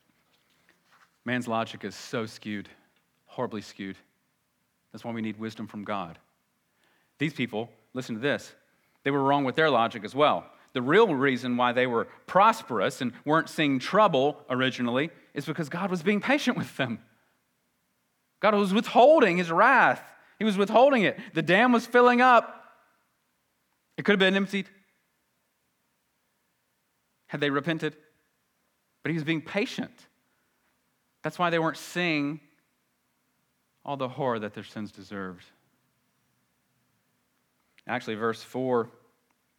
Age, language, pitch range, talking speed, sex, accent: 40-59, English, 125-205 Hz, 135 wpm, male, American